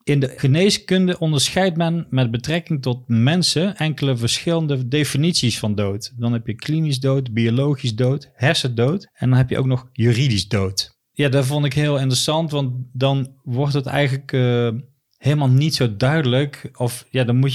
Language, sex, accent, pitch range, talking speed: Dutch, male, Dutch, 120-145 Hz, 170 wpm